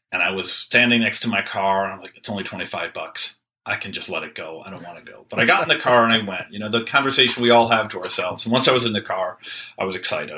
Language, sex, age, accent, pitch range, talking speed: English, male, 40-59, American, 95-115 Hz, 310 wpm